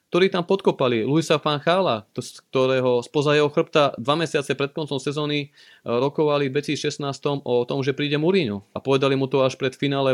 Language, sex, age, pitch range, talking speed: Slovak, male, 30-49, 115-145 Hz, 190 wpm